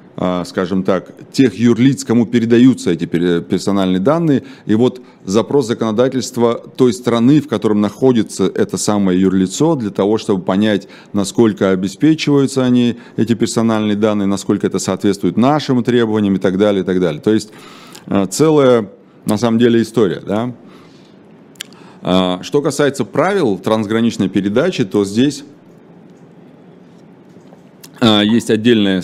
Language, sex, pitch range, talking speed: Russian, male, 100-125 Hz, 120 wpm